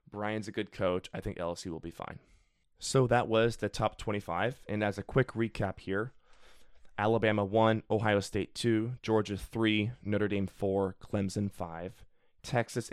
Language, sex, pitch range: English, male, 95-115 Hz